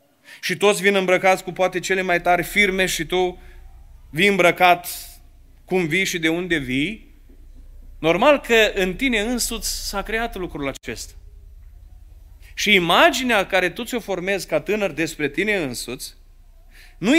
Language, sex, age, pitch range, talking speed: Romanian, male, 30-49, 145-225 Hz, 145 wpm